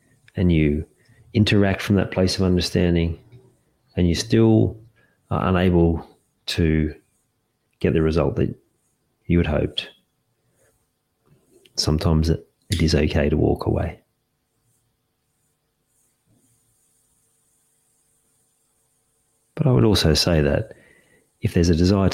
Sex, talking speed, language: male, 105 wpm, English